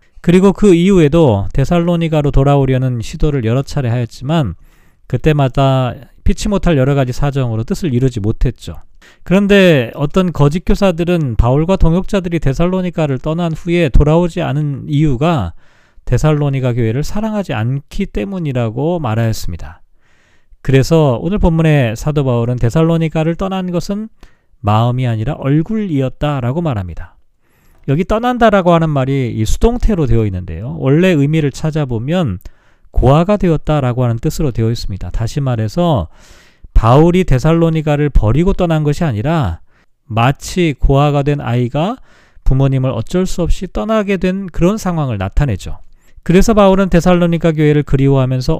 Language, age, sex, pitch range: Korean, 40-59, male, 125-170 Hz